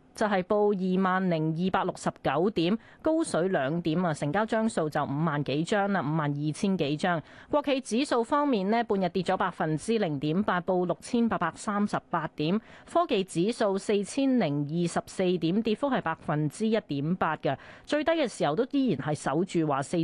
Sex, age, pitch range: female, 30-49, 165-225 Hz